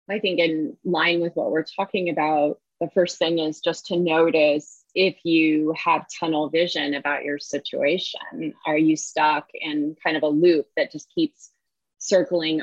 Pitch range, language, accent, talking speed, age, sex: 155-185 Hz, English, American, 170 wpm, 20-39, female